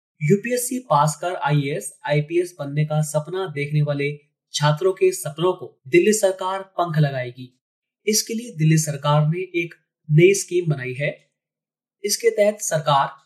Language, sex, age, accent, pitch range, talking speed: Hindi, male, 20-39, native, 145-185 Hz, 135 wpm